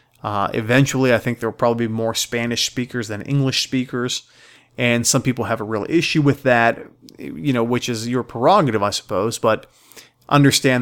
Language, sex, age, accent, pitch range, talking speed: English, male, 30-49, American, 110-135 Hz, 185 wpm